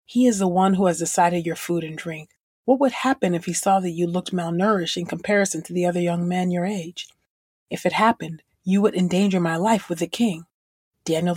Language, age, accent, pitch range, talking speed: English, 30-49, American, 165-195 Hz, 220 wpm